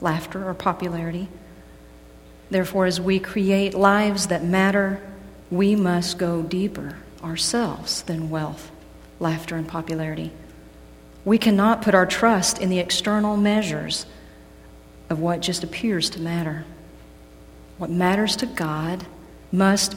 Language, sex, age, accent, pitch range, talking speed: English, female, 40-59, American, 155-195 Hz, 120 wpm